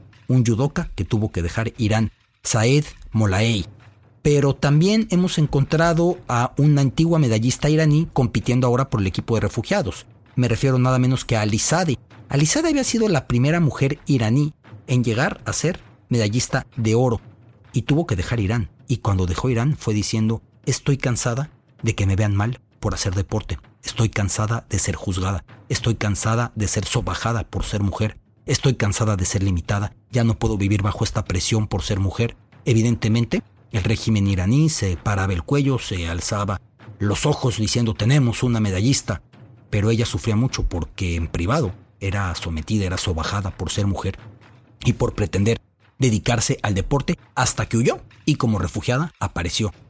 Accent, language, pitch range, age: Mexican, English, 105-130 Hz, 40-59